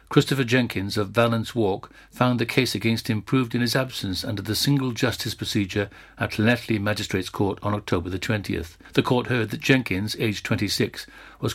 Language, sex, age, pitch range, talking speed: English, male, 60-79, 105-130 Hz, 180 wpm